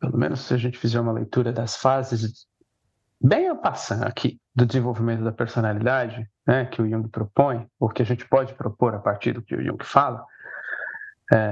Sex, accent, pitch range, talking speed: male, Brazilian, 110-130 Hz, 190 wpm